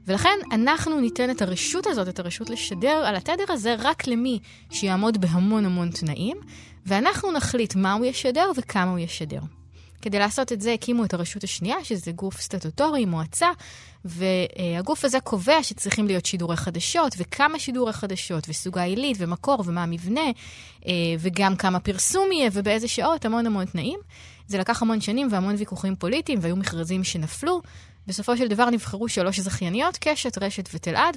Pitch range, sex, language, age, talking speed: 180-250 Hz, female, Hebrew, 20-39, 155 wpm